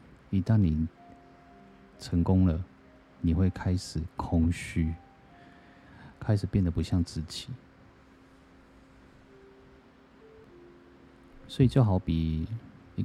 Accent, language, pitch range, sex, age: native, Chinese, 80-105 Hz, male, 30-49